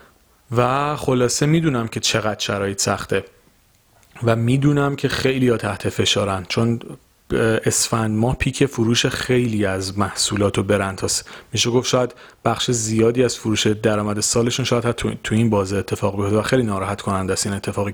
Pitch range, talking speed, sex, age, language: 110-135 Hz, 150 wpm, male, 40-59, Persian